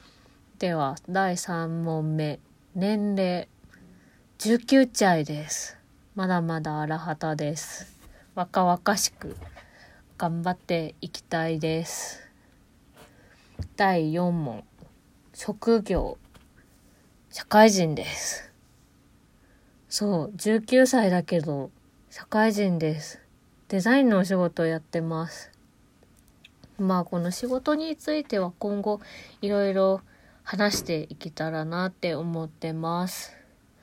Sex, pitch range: female, 165-225 Hz